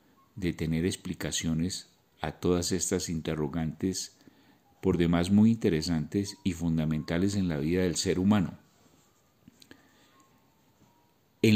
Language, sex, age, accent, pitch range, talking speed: Spanish, male, 40-59, Colombian, 85-105 Hz, 105 wpm